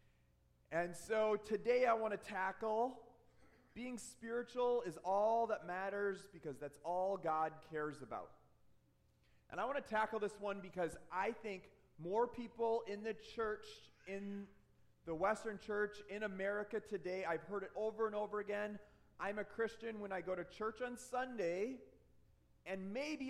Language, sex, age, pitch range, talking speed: English, male, 30-49, 175-220 Hz, 155 wpm